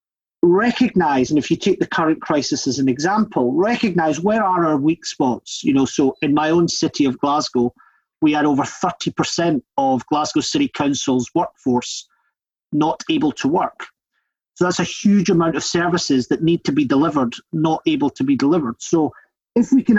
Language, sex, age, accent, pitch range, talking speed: English, male, 40-59, British, 145-210 Hz, 180 wpm